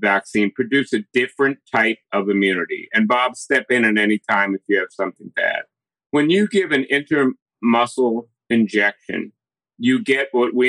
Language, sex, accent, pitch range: English, male, American, 110-135 Hz